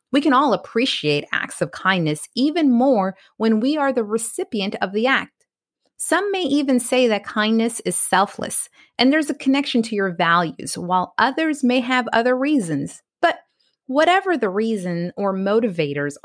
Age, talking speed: 30-49, 165 wpm